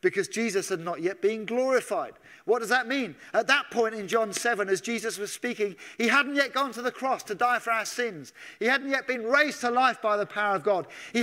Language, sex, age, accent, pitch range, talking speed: English, male, 40-59, British, 215-270 Hz, 245 wpm